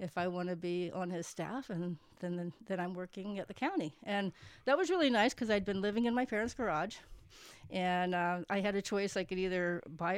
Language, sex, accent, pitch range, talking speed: English, female, American, 175-245 Hz, 230 wpm